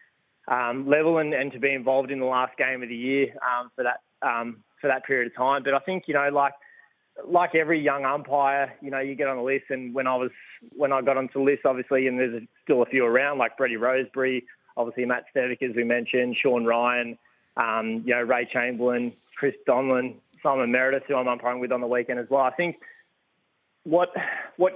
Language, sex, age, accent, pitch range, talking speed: English, male, 20-39, Australian, 120-140 Hz, 220 wpm